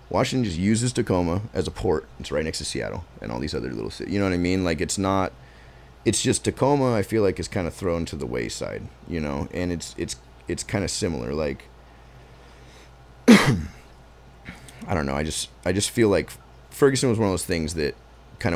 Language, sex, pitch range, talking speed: English, male, 70-100 Hz, 215 wpm